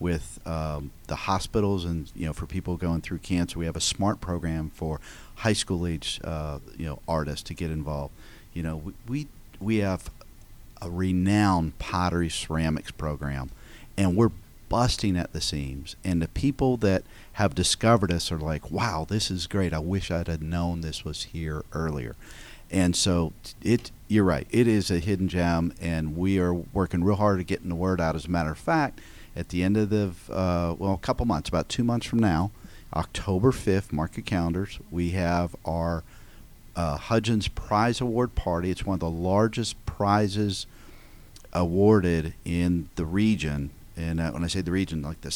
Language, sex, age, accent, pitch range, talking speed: English, male, 50-69, American, 80-100 Hz, 185 wpm